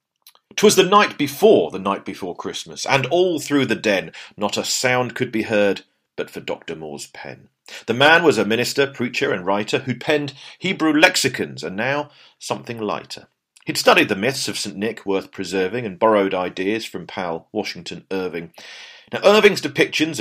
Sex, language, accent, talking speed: male, English, British, 175 wpm